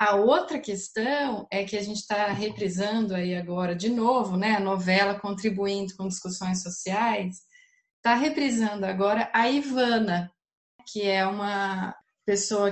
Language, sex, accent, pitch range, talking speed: Portuguese, female, Brazilian, 195-255 Hz, 135 wpm